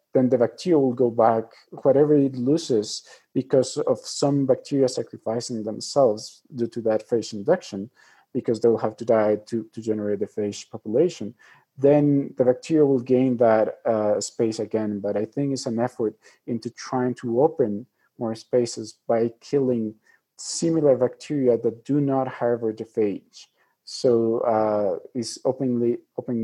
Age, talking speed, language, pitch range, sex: 40-59, 155 wpm, English, 110-135 Hz, male